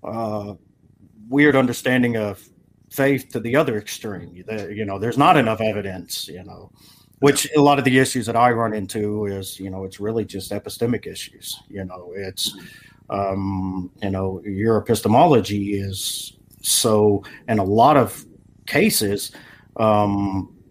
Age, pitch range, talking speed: 40-59, 100-125 Hz, 150 wpm